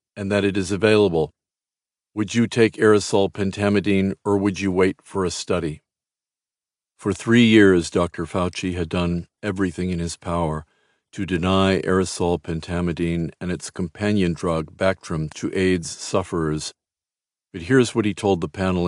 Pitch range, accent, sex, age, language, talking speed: 90-105 Hz, American, male, 50-69, English, 150 wpm